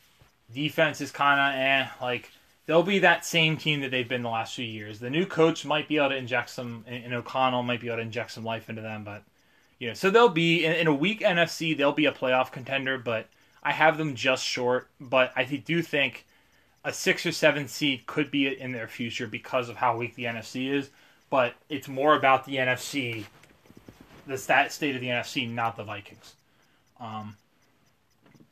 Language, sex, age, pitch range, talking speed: English, male, 20-39, 120-150 Hz, 210 wpm